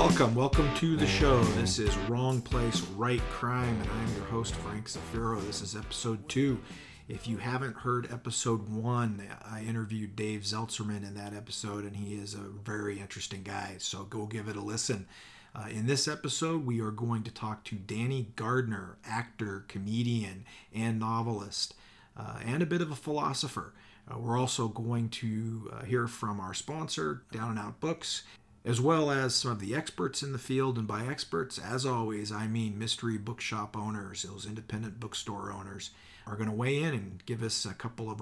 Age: 40-59